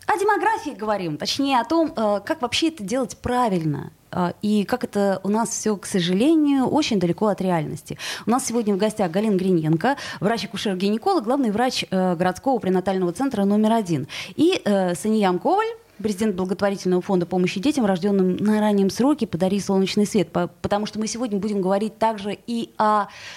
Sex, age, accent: female, 20-39, native